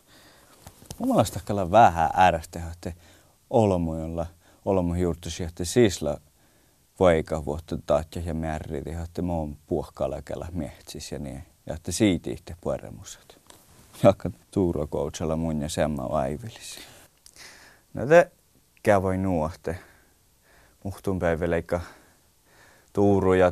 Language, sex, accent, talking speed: Czech, male, Finnish, 80 wpm